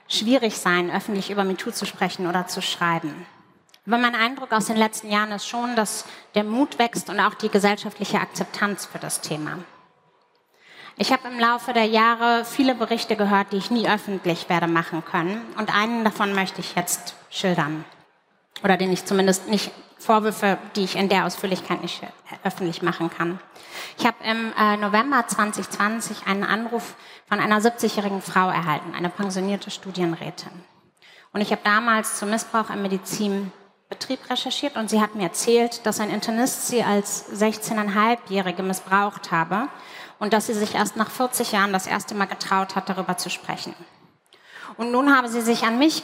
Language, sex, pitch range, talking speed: German, female, 190-225 Hz, 170 wpm